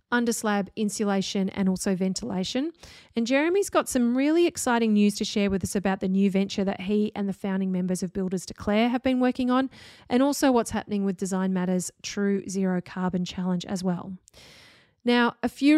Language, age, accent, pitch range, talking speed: English, 30-49, Australian, 195-235 Hz, 190 wpm